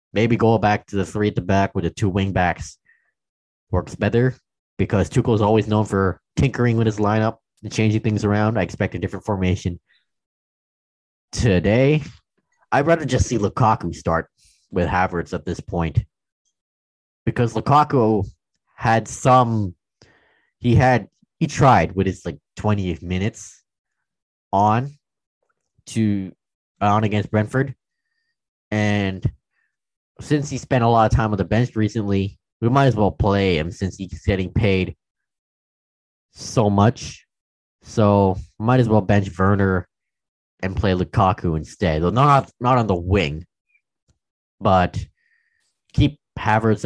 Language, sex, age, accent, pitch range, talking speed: English, male, 20-39, American, 95-115 Hz, 140 wpm